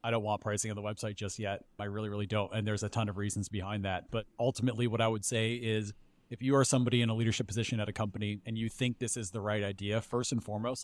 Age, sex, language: 30-49, male, English